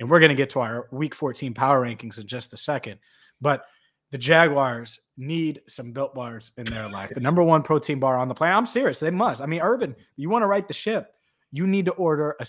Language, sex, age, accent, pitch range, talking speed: English, male, 30-49, American, 125-155 Hz, 245 wpm